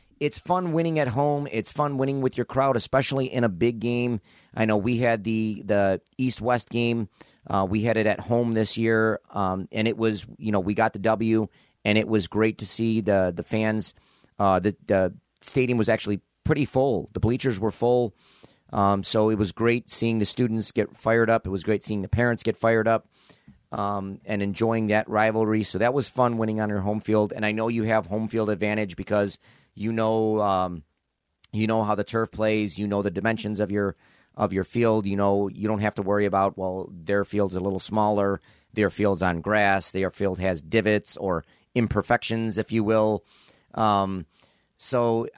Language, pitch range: English, 100-115 Hz